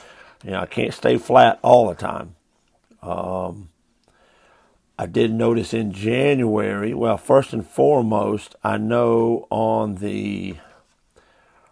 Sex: male